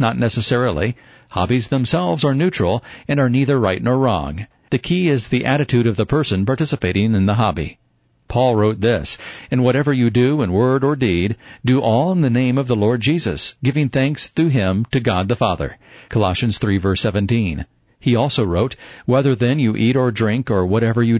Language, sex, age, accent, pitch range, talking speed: English, male, 50-69, American, 105-130 Hz, 190 wpm